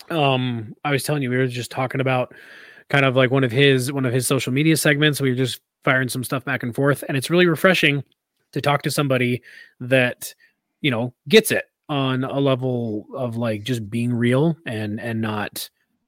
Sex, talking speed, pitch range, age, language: male, 205 wpm, 125-155 Hz, 20-39, English